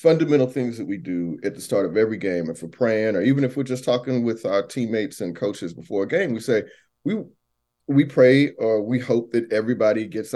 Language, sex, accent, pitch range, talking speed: English, male, American, 110-150 Hz, 225 wpm